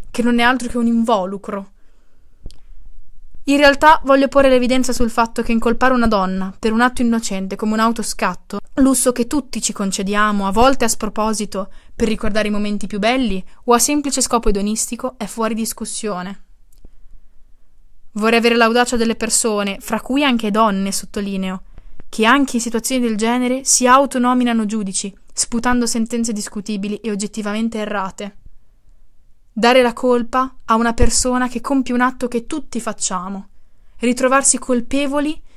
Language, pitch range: Italian, 205-245 Hz